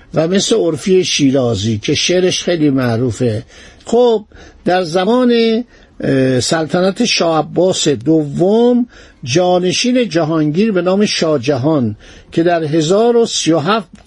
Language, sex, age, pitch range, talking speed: Persian, male, 50-69, 155-210 Hz, 95 wpm